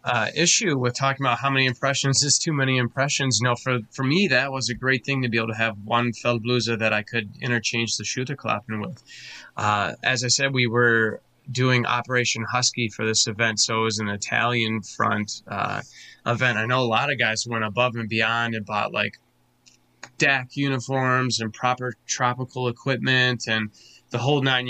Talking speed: 195 wpm